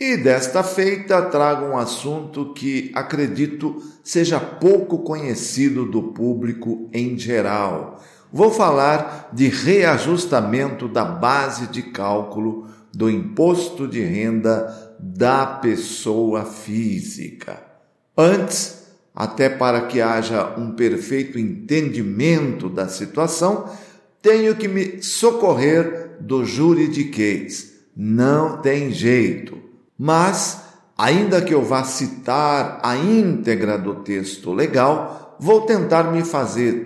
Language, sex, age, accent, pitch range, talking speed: Portuguese, male, 50-69, Brazilian, 115-165 Hz, 105 wpm